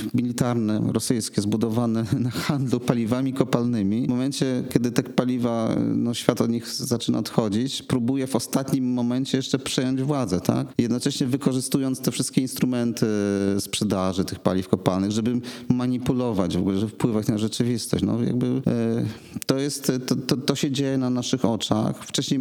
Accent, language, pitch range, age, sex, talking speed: native, Polish, 105-130 Hz, 40-59, male, 155 wpm